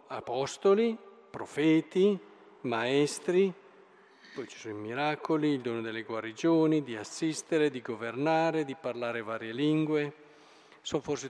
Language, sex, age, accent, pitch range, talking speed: Italian, male, 50-69, native, 145-200 Hz, 115 wpm